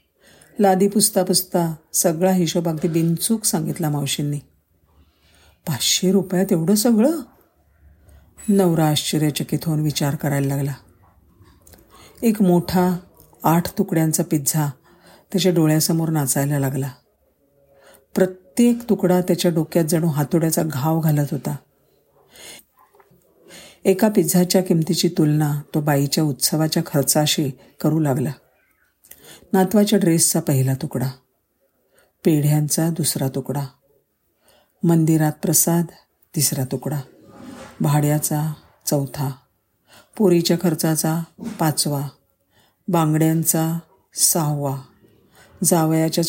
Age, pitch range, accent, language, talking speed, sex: 50-69, 140-180 Hz, native, Marathi, 85 wpm, female